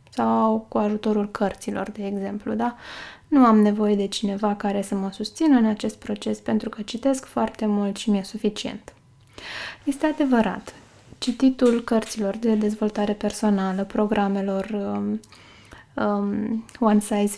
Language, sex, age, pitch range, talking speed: Romanian, female, 20-39, 200-235 Hz, 135 wpm